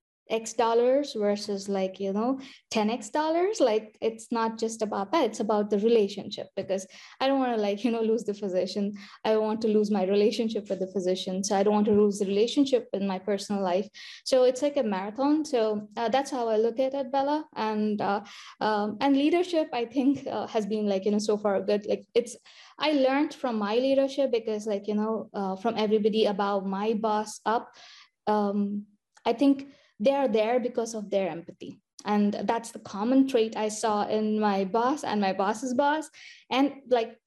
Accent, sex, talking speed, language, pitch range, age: Indian, female, 200 wpm, English, 210-250 Hz, 20-39